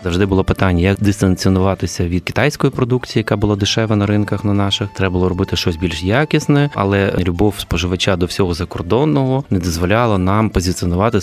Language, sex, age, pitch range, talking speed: Ukrainian, male, 20-39, 90-110 Hz, 165 wpm